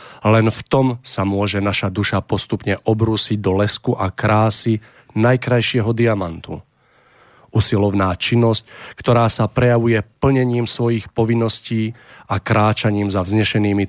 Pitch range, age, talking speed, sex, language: 100-115 Hz, 40-59, 115 wpm, male, Slovak